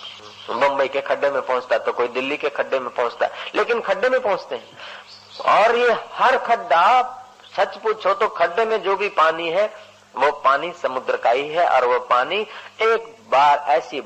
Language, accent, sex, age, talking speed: Hindi, native, male, 50-69, 180 wpm